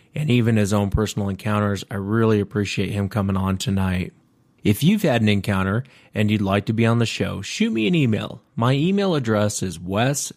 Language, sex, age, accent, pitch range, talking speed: English, male, 30-49, American, 100-115 Hz, 205 wpm